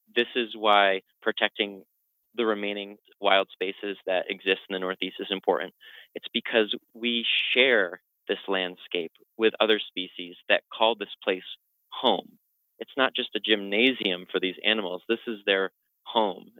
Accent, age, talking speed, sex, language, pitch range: American, 30-49, 150 wpm, male, English, 100-115 Hz